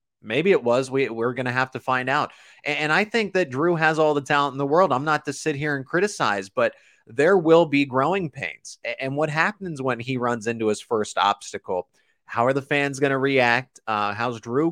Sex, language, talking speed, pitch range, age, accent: male, English, 235 wpm, 120-155 Hz, 30-49, American